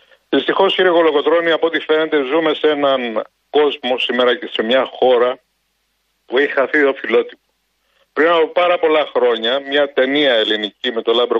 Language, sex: Greek, male